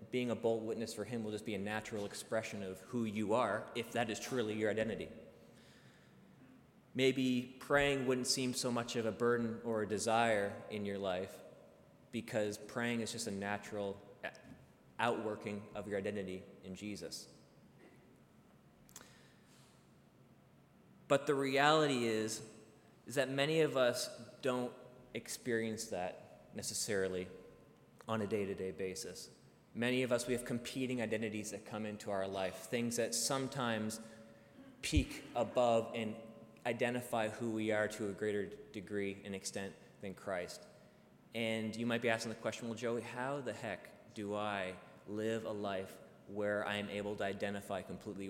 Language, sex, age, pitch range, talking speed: English, male, 20-39, 105-120 Hz, 150 wpm